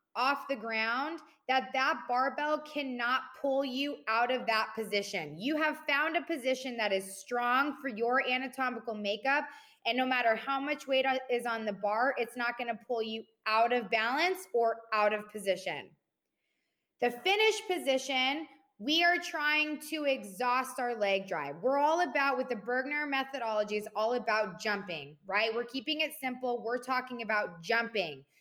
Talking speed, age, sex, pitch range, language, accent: 165 wpm, 20-39, female, 240-310 Hz, English, American